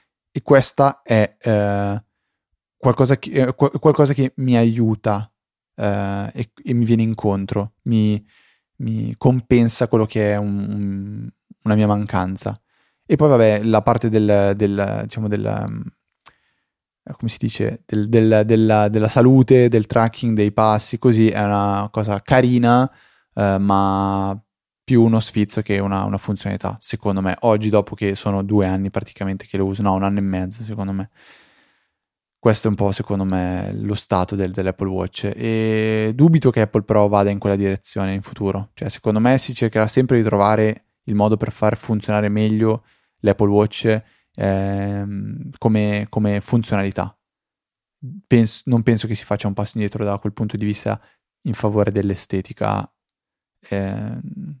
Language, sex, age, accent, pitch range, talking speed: Italian, male, 20-39, native, 100-115 Hz, 155 wpm